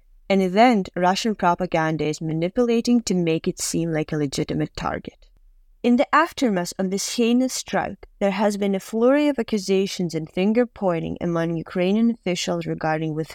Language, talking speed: English, 155 wpm